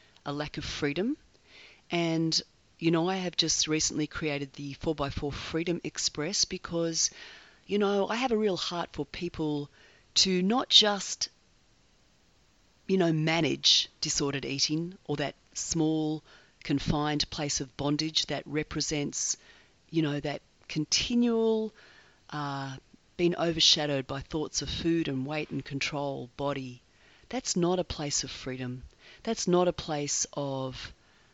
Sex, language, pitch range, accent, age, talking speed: female, English, 145-185 Hz, Australian, 40-59, 135 wpm